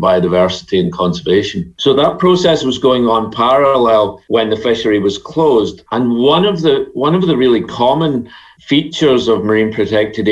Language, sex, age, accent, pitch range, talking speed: English, male, 40-59, British, 110-130 Hz, 165 wpm